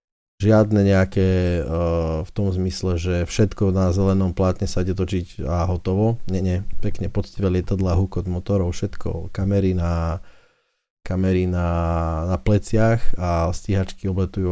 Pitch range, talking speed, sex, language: 90-105 Hz, 130 wpm, male, Slovak